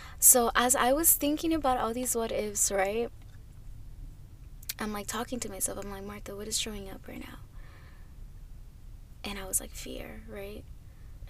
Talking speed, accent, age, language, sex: 165 wpm, American, 10-29, English, female